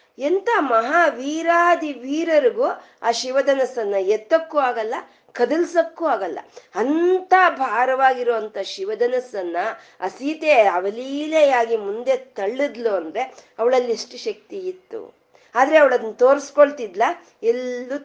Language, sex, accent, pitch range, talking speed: Kannada, female, native, 210-355 Hz, 85 wpm